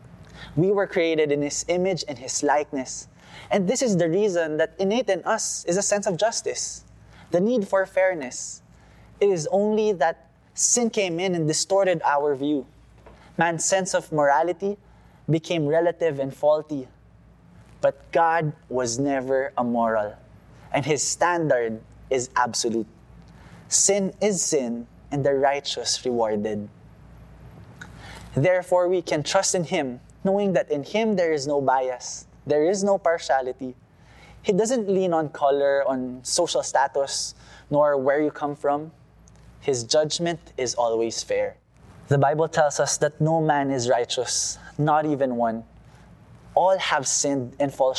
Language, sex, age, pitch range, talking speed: English, male, 20-39, 130-180 Hz, 145 wpm